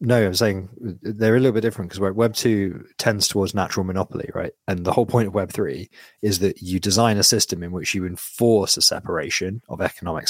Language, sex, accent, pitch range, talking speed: English, male, British, 95-110 Hz, 215 wpm